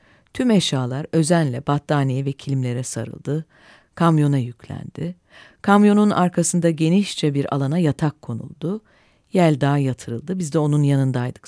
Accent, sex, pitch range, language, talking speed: native, female, 135-185 Hz, Turkish, 120 wpm